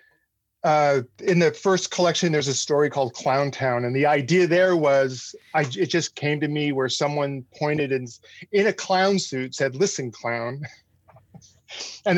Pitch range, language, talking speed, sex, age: 120-155 Hz, English, 170 wpm, male, 40-59